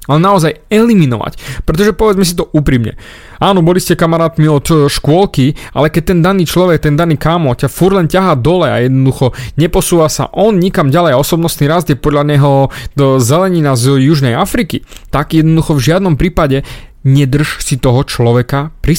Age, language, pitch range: 30-49, Slovak, 130-165 Hz